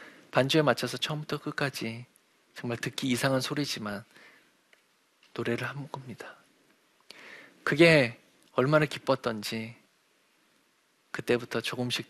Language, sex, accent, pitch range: Korean, male, native, 115-155 Hz